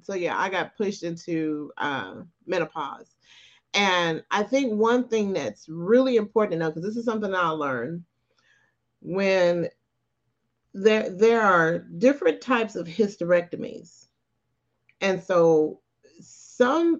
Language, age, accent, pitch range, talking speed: English, 40-59, American, 160-210 Hz, 125 wpm